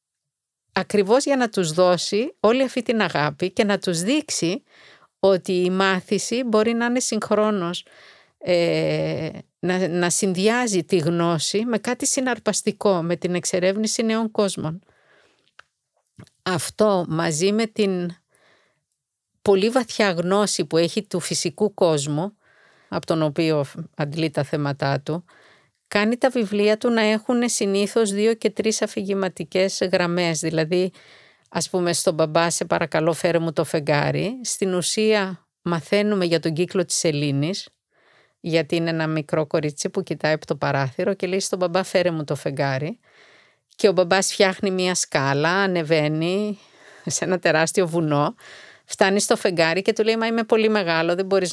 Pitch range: 165-210 Hz